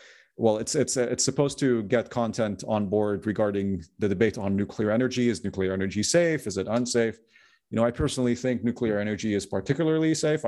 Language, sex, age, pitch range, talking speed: English, male, 30-49, 100-120 Hz, 190 wpm